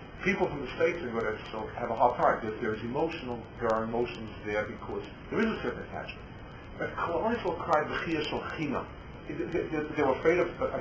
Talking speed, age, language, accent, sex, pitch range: 180 wpm, 50-69, English, American, male, 115-160 Hz